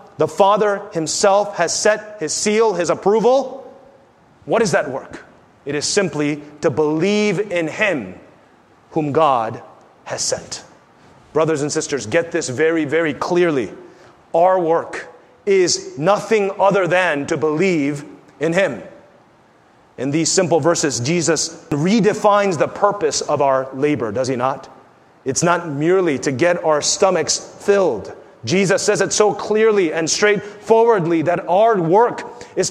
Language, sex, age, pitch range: English, male, 30-49, 155-205 Hz